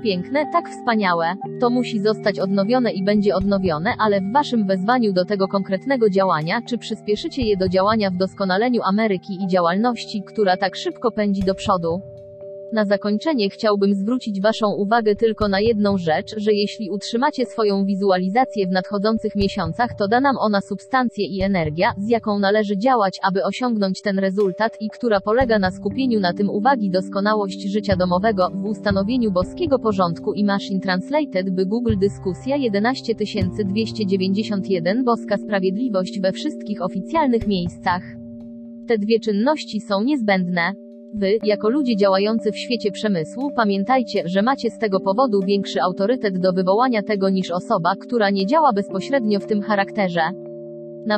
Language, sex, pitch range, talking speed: English, female, 195-225 Hz, 150 wpm